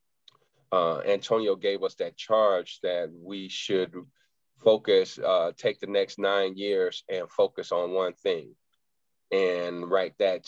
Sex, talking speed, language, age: male, 135 wpm, English, 30-49